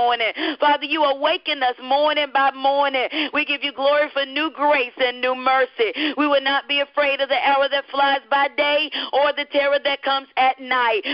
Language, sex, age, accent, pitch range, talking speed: English, female, 40-59, American, 270-295 Hz, 200 wpm